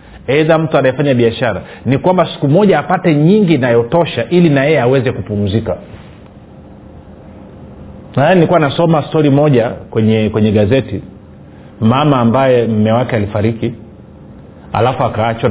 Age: 40-59